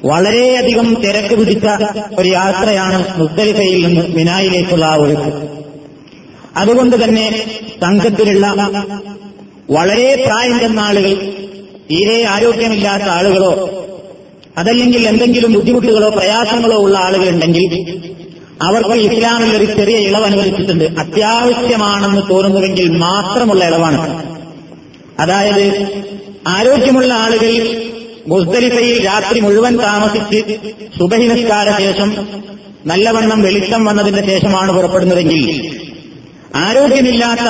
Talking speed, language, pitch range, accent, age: 80 wpm, Malayalam, 185-225 Hz, native, 30-49